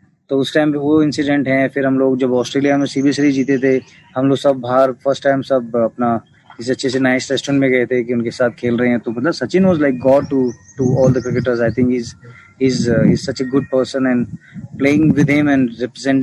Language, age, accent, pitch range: Hindi, 20-39, native, 120-135 Hz